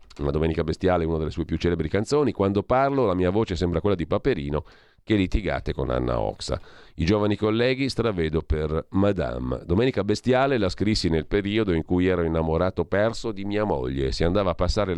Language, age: Italian, 40-59